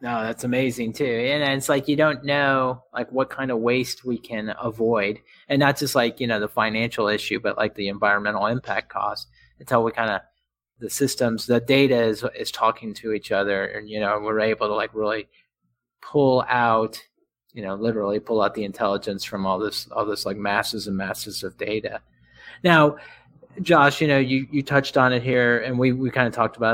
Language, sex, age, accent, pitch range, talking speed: English, male, 30-49, American, 110-130 Hz, 205 wpm